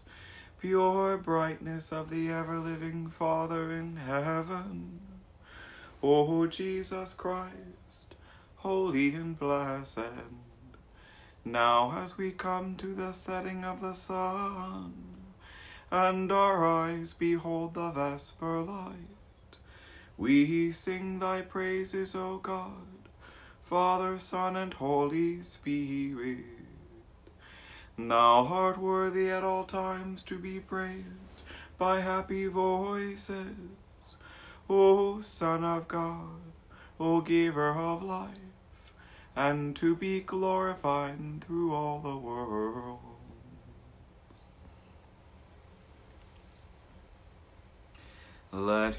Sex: male